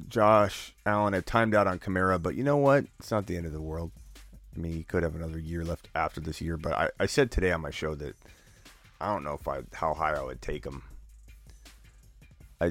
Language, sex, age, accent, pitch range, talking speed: English, male, 30-49, American, 80-90 Hz, 235 wpm